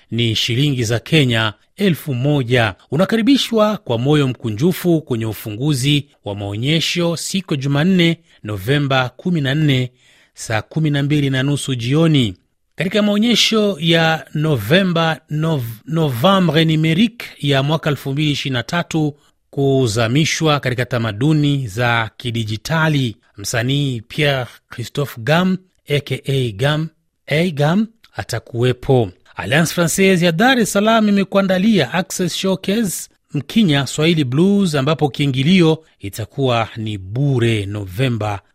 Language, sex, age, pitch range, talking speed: Swahili, male, 30-49, 120-165 Hz, 100 wpm